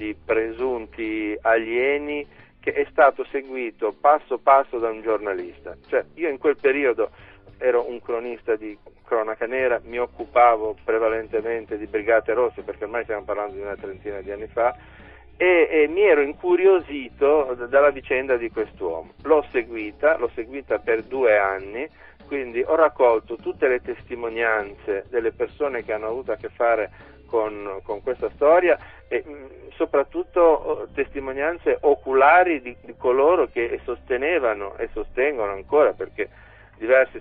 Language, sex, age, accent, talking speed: Italian, male, 50-69, native, 140 wpm